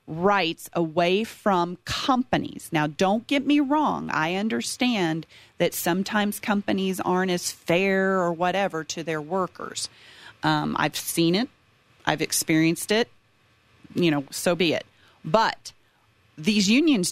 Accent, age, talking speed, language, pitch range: American, 40-59, 130 wpm, English, 160-215 Hz